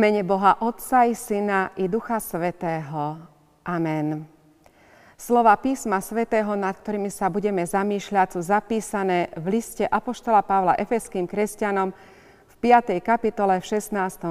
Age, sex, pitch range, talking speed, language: 40-59, female, 185-225 Hz, 130 wpm, Slovak